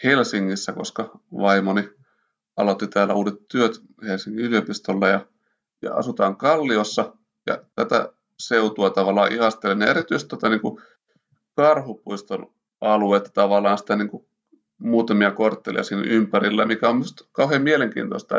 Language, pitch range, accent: Finnish, 100-120 Hz, native